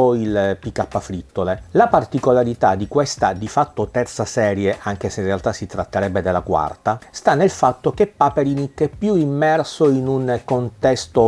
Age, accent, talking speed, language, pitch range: 40-59, native, 160 wpm, Italian, 100-130 Hz